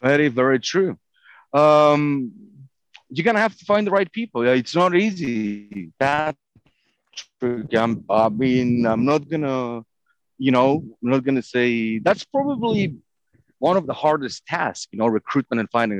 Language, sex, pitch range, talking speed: English, male, 115-165 Hz, 165 wpm